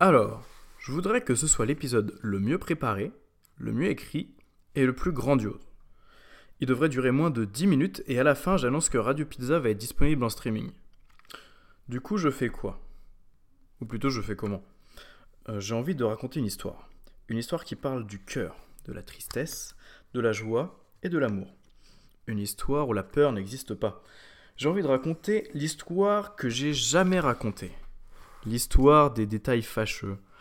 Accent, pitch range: French, 105-145 Hz